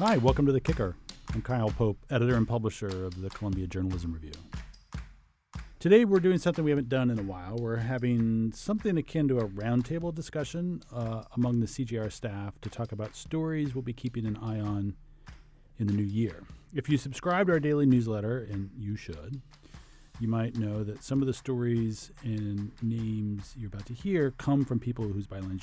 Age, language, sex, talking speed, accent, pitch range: 40-59, English, male, 190 wpm, American, 105-135 Hz